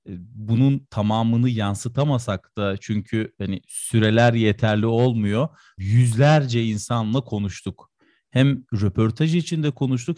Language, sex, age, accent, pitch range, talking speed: Turkish, male, 40-59, native, 115-140 Hz, 95 wpm